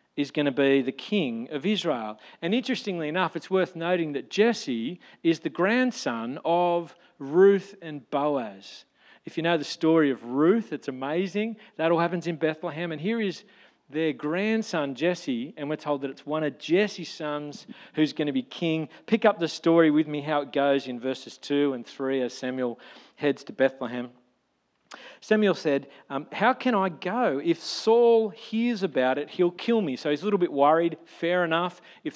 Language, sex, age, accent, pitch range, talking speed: English, male, 40-59, Australian, 145-200 Hz, 185 wpm